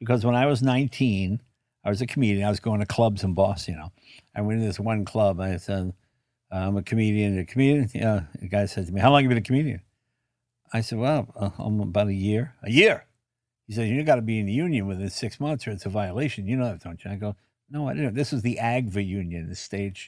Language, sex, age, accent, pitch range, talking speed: English, male, 60-79, American, 100-125 Hz, 265 wpm